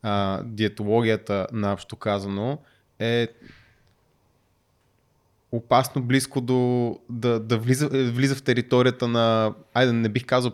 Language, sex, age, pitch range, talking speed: Bulgarian, male, 20-39, 100-125 Hz, 110 wpm